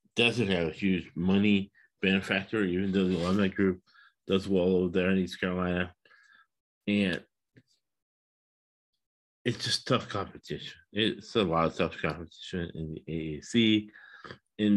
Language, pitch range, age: English, 90-110 Hz, 30-49